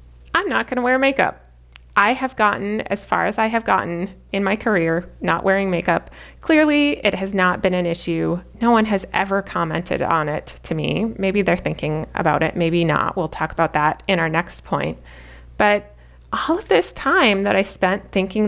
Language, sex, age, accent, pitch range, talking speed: English, female, 30-49, American, 165-215 Hz, 200 wpm